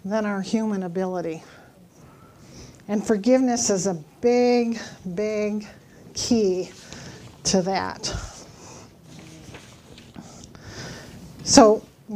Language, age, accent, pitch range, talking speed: English, 40-59, American, 200-240 Hz, 75 wpm